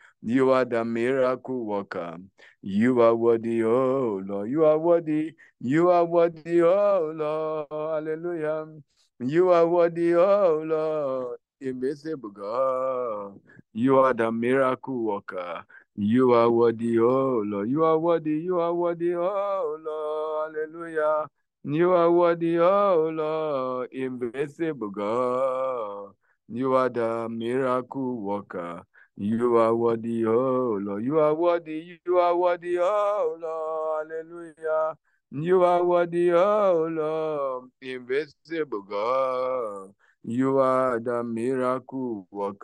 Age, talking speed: 60-79, 120 wpm